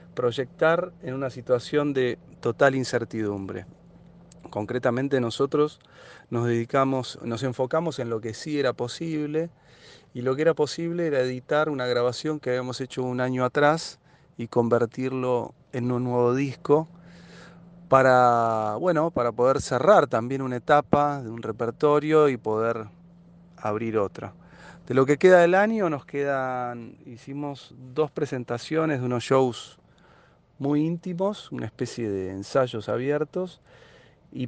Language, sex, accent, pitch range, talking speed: Spanish, male, Argentinian, 120-155 Hz, 135 wpm